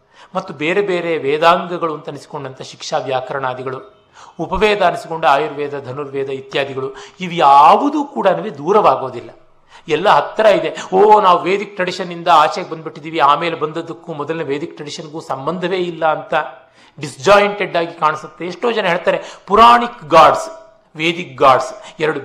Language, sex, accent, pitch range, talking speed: Kannada, male, native, 155-195 Hz, 125 wpm